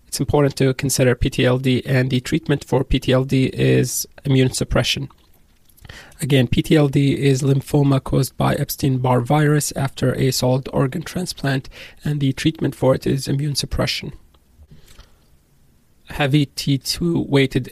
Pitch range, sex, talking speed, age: 125-140 Hz, male, 125 wpm, 30-49